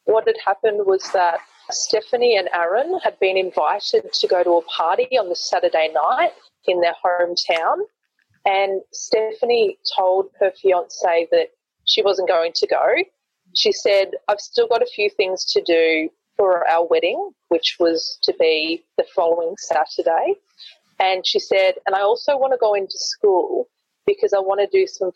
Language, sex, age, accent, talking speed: English, female, 30-49, Australian, 170 wpm